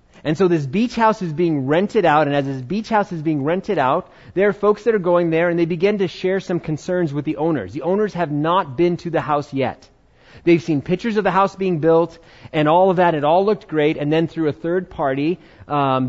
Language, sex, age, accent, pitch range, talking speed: English, male, 30-49, American, 135-175 Hz, 250 wpm